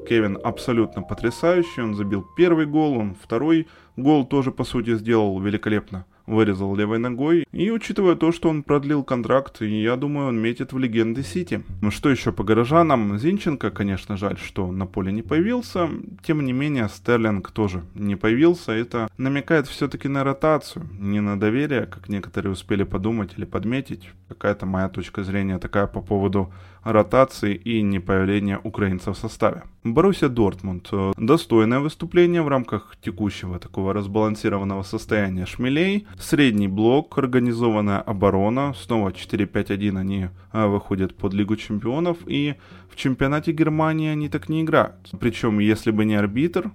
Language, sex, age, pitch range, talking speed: Ukrainian, male, 20-39, 100-140 Hz, 145 wpm